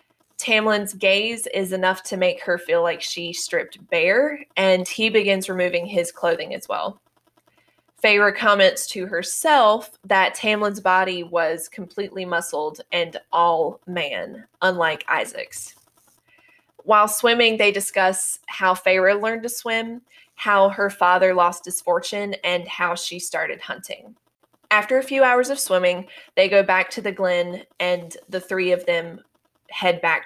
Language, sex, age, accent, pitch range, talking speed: English, female, 20-39, American, 180-230 Hz, 145 wpm